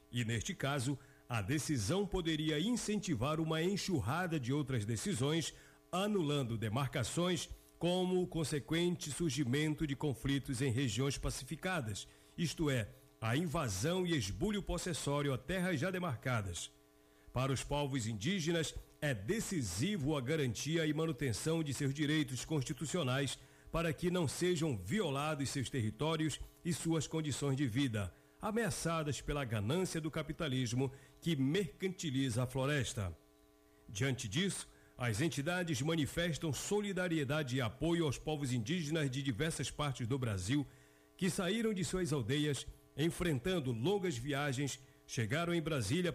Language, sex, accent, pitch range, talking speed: Portuguese, male, Brazilian, 130-165 Hz, 125 wpm